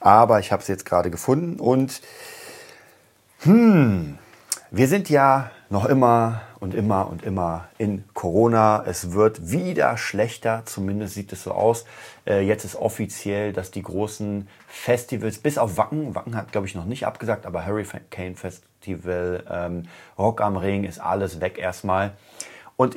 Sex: male